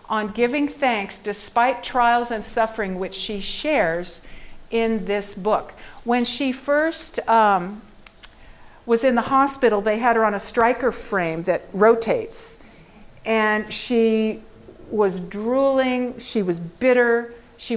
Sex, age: female, 50-69